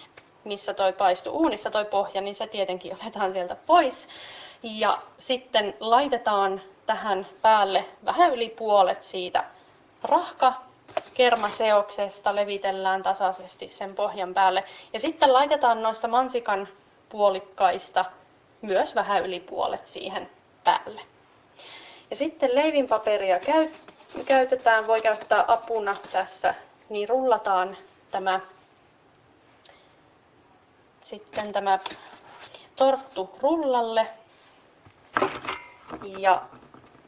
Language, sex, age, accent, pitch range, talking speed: Finnish, female, 20-39, native, 195-240 Hz, 90 wpm